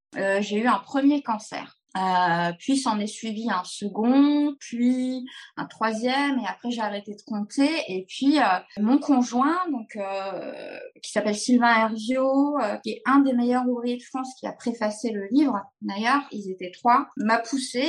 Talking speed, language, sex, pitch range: 180 wpm, French, female, 205-275 Hz